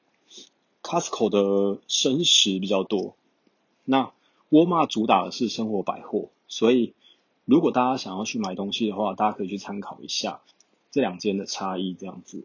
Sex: male